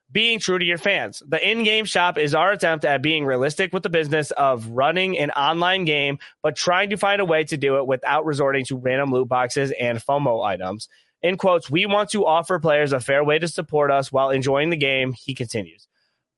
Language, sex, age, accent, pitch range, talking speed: English, male, 20-39, American, 130-170 Hz, 215 wpm